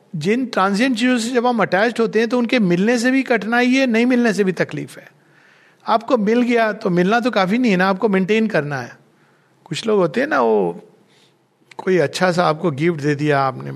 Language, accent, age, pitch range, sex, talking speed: Hindi, native, 50-69, 165-230 Hz, male, 220 wpm